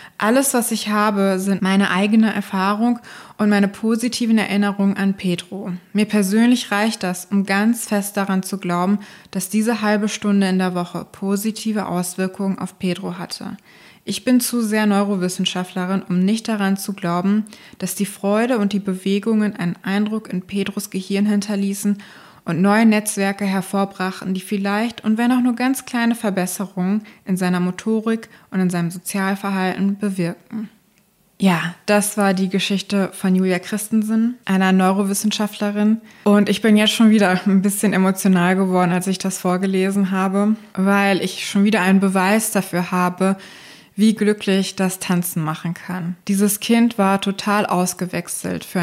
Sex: female